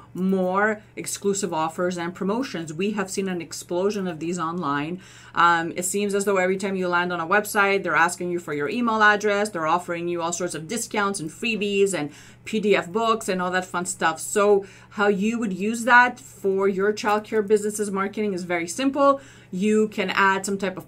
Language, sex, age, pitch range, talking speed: English, female, 30-49, 175-210 Hz, 200 wpm